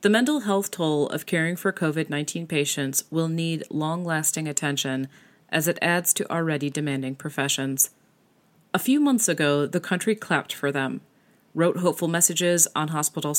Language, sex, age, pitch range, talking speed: English, female, 40-59, 150-185 Hz, 160 wpm